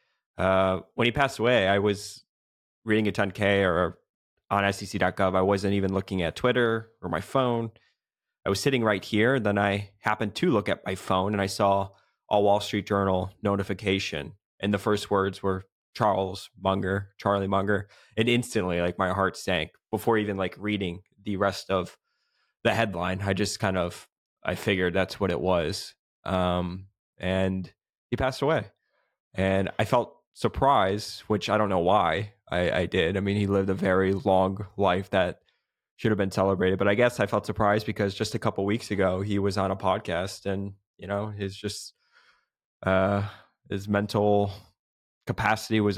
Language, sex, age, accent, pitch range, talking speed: English, male, 20-39, American, 95-105 Hz, 180 wpm